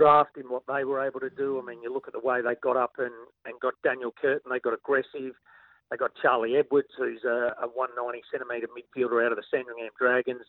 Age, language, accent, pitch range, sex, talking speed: 40-59, English, Australian, 120-140 Hz, male, 230 wpm